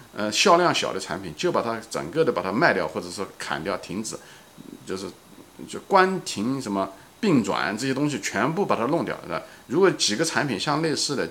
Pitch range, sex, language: 105-160 Hz, male, Chinese